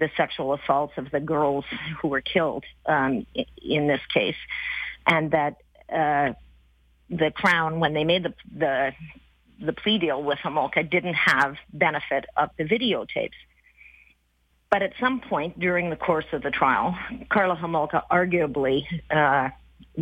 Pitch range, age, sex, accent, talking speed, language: 145-180 Hz, 50-69, female, American, 145 wpm, English